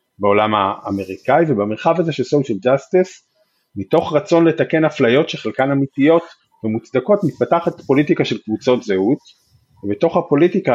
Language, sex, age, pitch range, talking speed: Hebrew, male, 30-49, 110-150 Hz, 115 wpm